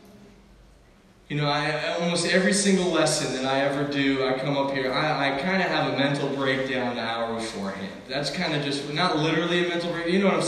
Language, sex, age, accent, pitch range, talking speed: English, male, 20-39, American, 165-235 Hz, 225 wpm